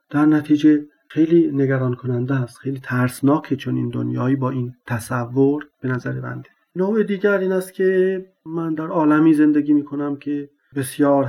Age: 50-69